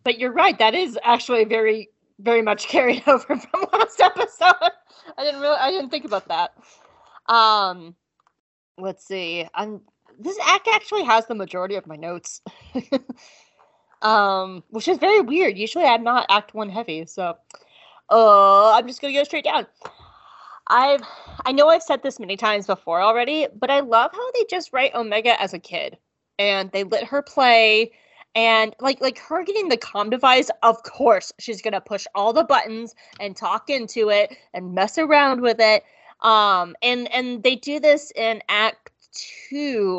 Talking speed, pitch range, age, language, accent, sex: 170 wpm, 200-275 Hz, 20-39, English, American, female